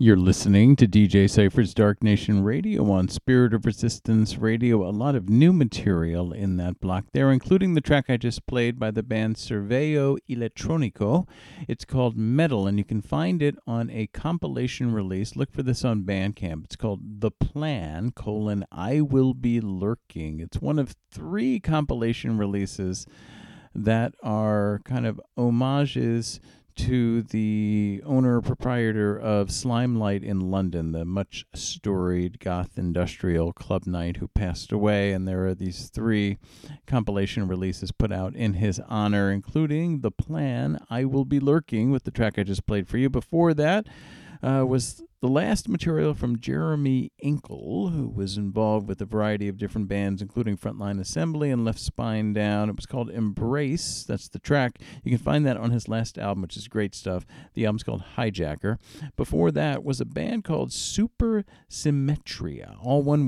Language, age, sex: English, 50-69, male